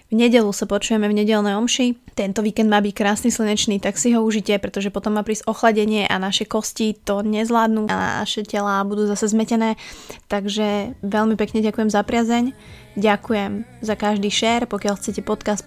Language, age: Slovak, 20-39